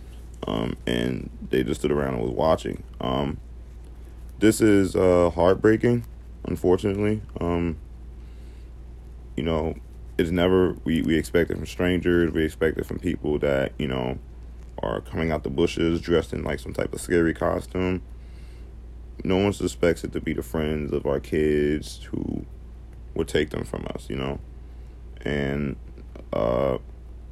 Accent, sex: American, male